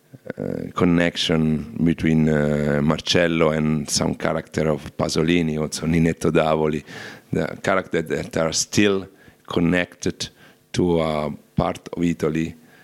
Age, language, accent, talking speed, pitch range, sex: 50-69, English, Italian, 110 wpm, 75-85 Hz, male